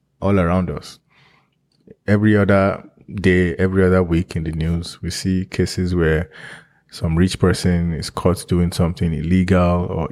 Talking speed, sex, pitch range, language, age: 150 wpm, male, 85-95 Hz, English, 20-39